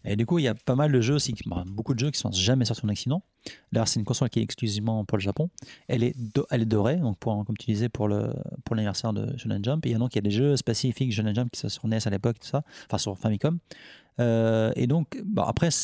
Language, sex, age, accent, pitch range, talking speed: French, male, 30-49, French, 110-130 Hz, 285 wpm